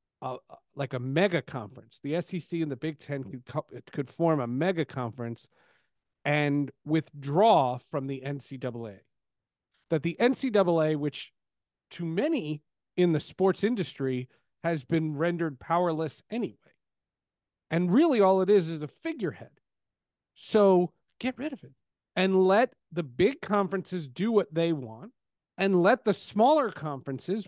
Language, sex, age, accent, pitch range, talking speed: English, male, 40-59, American, 140-205 Hz, 140 wpm